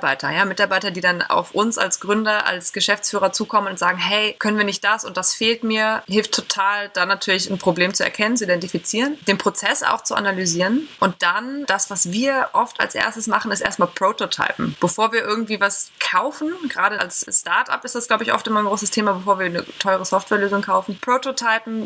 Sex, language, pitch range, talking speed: female, German, 185-225 Hz, 200 wpm